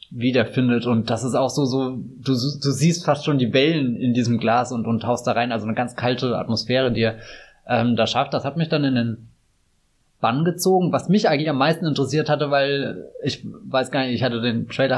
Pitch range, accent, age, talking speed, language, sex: 120-135 Hz, German, 20-39, 225 wpm, German, male